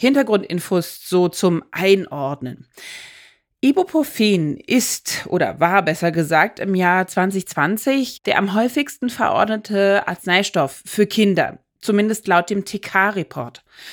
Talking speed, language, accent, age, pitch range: 105 wpm, German, German, 30-49, 165-215 Hz